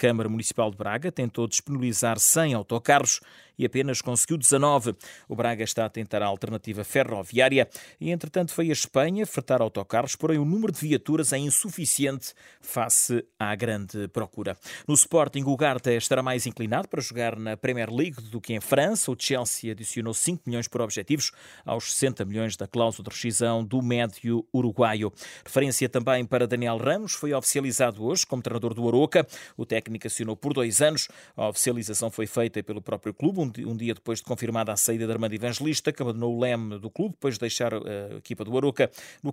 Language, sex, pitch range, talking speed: Portuguese, male, 115-140 Hz, 185 wpm